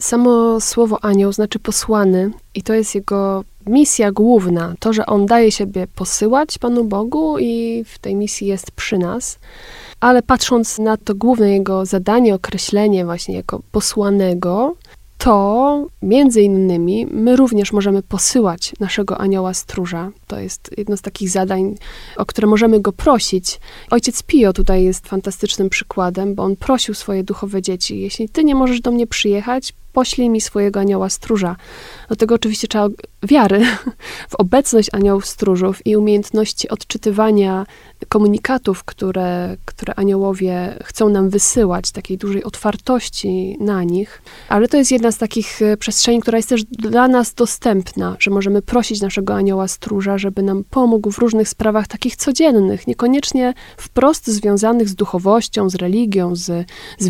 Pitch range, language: 195-235 Hz, Polish